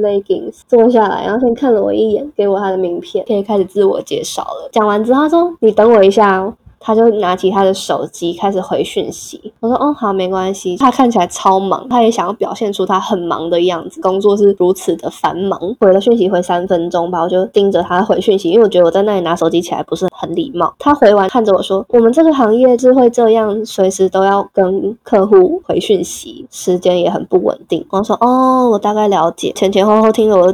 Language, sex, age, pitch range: Chinese, female, 20-39, 190-230 Hz